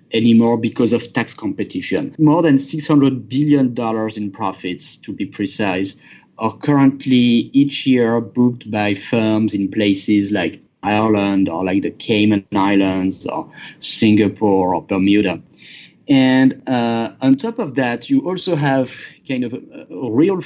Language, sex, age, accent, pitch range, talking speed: English, male, 30-49, French, 110-150 Hz, 140 wpm